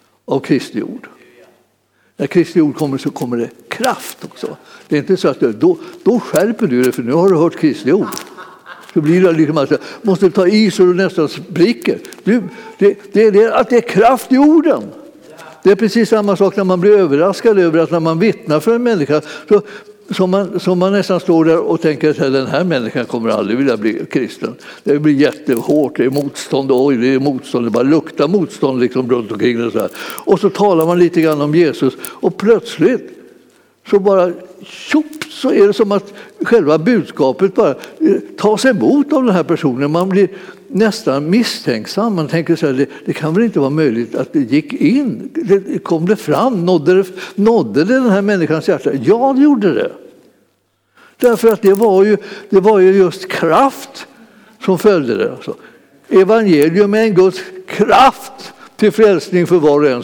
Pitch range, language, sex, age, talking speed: 160-225 Hz, Swedish, male, 60-79, 195 wpm